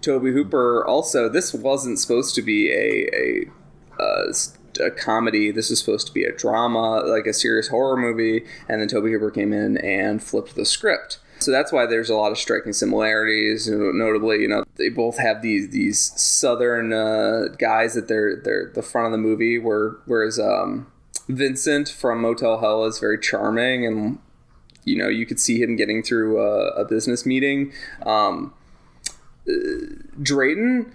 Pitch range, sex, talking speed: 110-145 Hz, male, 170 wpm